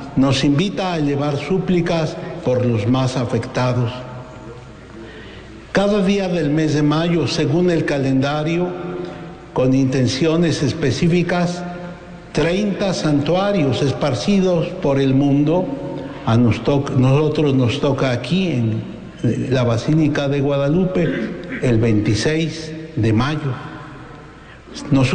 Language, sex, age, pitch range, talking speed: English, male, 60-79, 130-170 Hz, 105 wpm